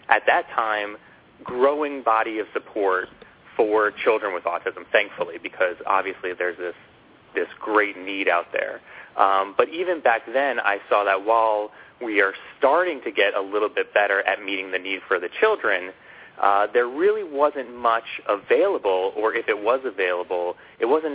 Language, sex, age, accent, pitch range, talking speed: English, male, 30-49, American, 100-135 Hz, 165 wpm